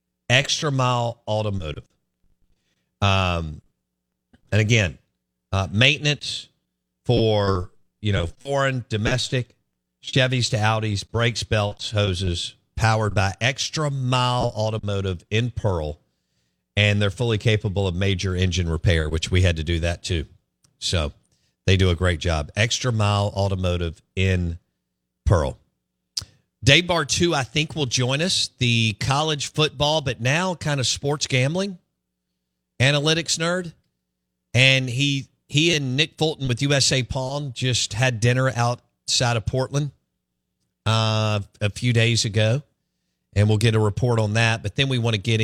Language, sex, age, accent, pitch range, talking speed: English, male, 50-69, American, 90-130 Hz, 135 wpm